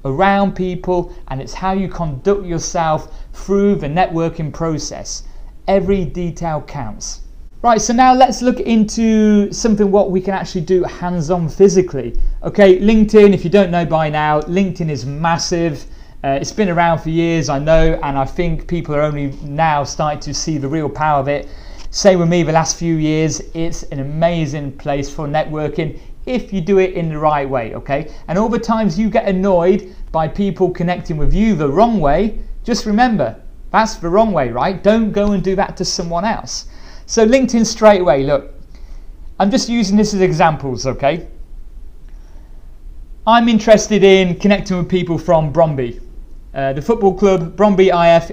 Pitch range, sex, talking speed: 150-200 Hz, male, 175 wpm